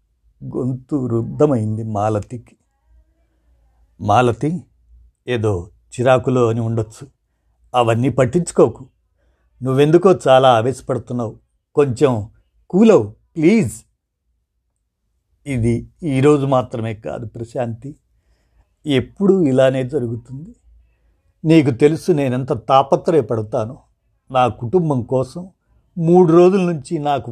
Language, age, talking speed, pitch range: Telugu, 50-69, 75 wpm, 110-150 Hz